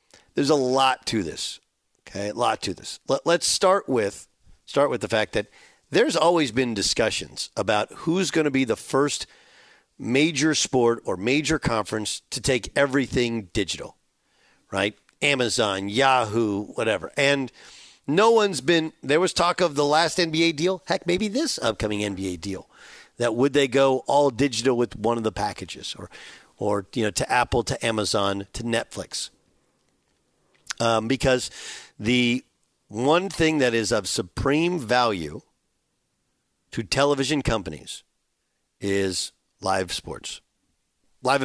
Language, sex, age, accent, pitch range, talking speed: English, male, 50-69, American, 115-155 Hz, 145 wpm